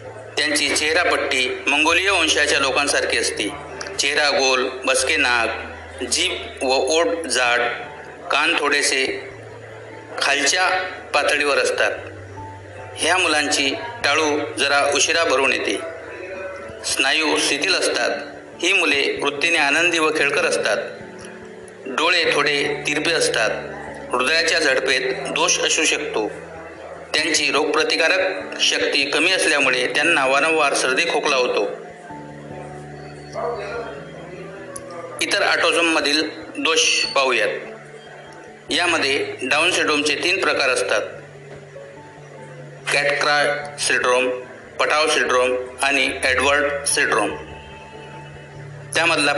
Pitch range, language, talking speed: 125-190 Hz, Marathi, 90 wpm